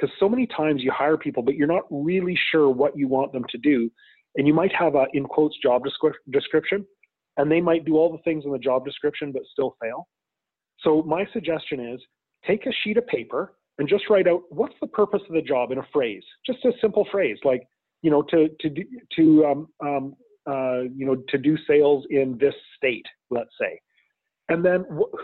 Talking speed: 215 wpm